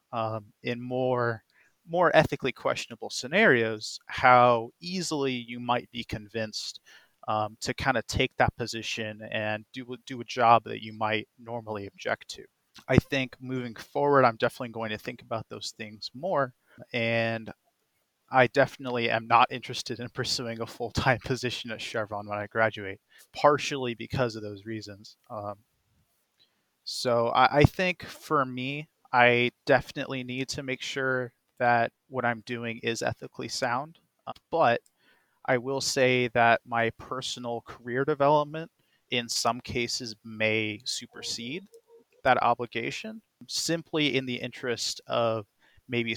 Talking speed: 140 wpm